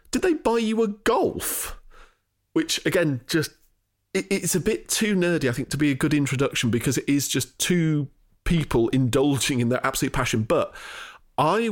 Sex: male